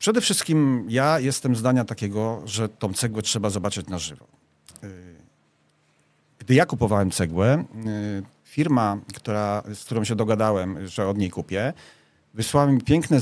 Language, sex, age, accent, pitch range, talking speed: Polish, male, 40-59, native, 100-125 Hz, 130 wpm